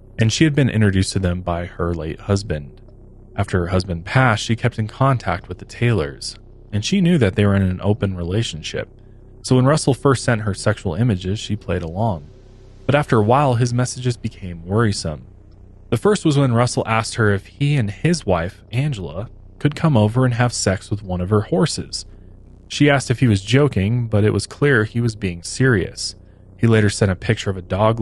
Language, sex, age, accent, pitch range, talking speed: English, male, 20-39, American, 95-120 Hz, 210 wpm